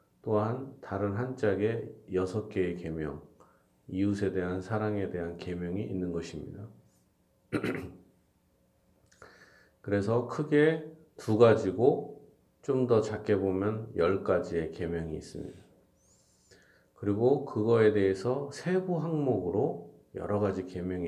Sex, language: male, Korean